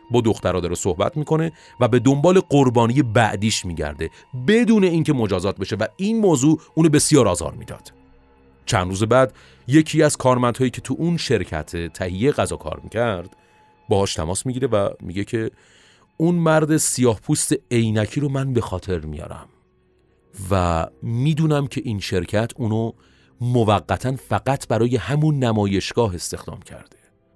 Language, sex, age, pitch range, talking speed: Persian, male, 40-59, 95-145 Hz, 140 wpm